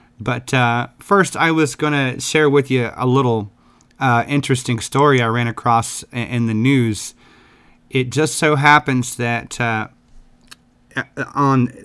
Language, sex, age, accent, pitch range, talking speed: English, male, 30-49, American, 110-130 Hz, 140 wpm